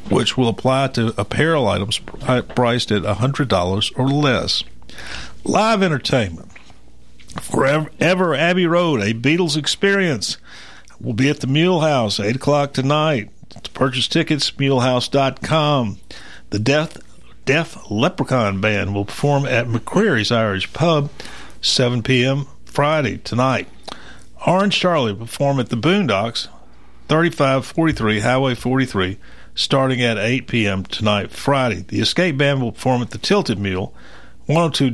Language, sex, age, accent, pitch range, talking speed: English, male, 50-69, American, 110-145 Hz, 125 wpm